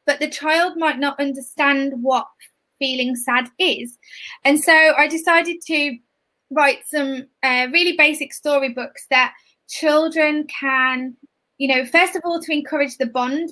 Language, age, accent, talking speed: English, 20-39, British, 145 wpm